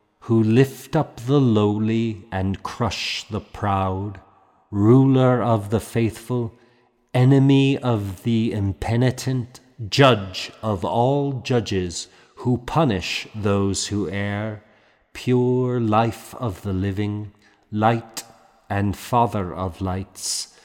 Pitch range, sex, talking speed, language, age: 100-120 Hz, male, 105 wpm, English, 40-59